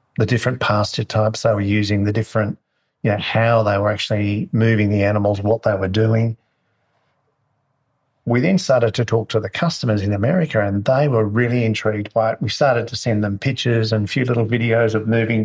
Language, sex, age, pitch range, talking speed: English, male, 50-69, 110-125 Hz, 200 wpm